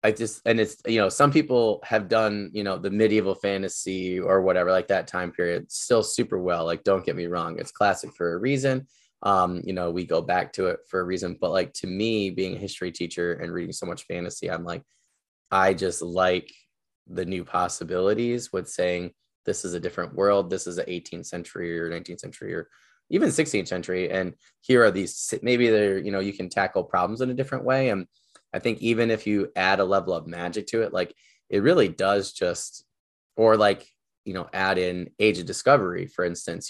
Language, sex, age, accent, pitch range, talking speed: English, male, 20-39, American, 90-105 Hz, 215 wpm